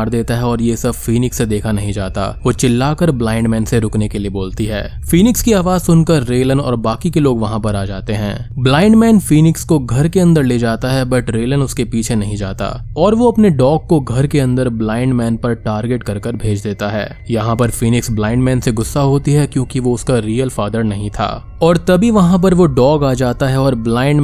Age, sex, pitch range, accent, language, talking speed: 20-39, male, 110-145 Hz, native, Hindi, 145 wpm